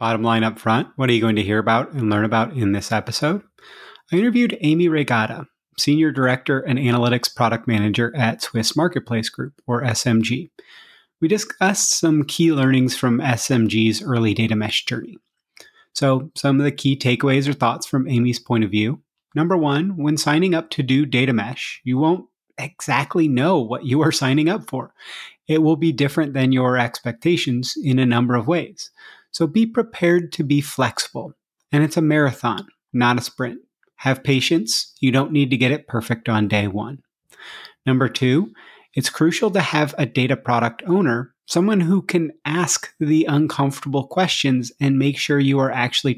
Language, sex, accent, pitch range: English, male, American, 120-160 Hz